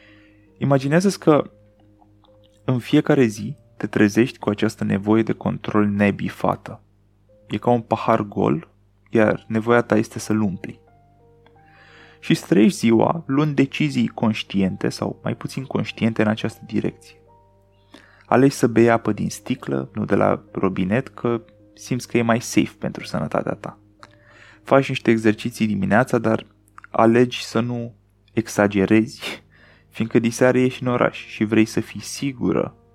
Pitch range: 105-120 Hz